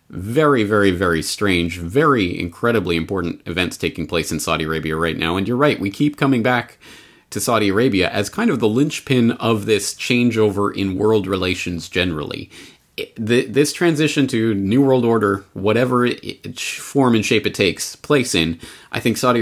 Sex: male